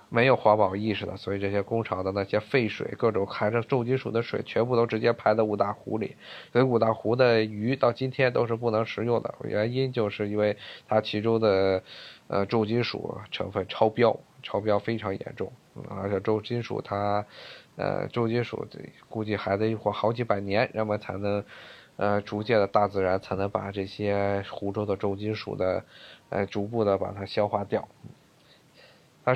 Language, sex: Chinese, male